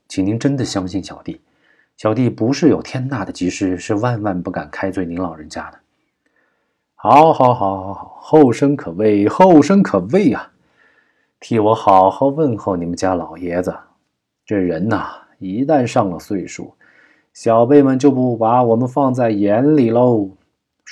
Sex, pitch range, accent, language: male, 95-145 Hz, native, Chinese